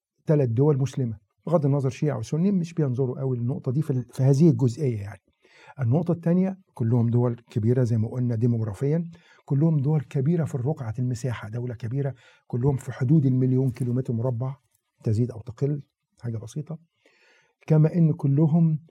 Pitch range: 120-155 Hz